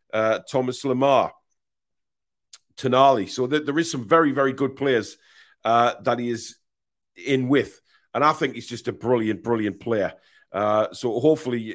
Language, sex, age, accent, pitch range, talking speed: English, male, 40-59, British, 115-145 Hz, 160 wpm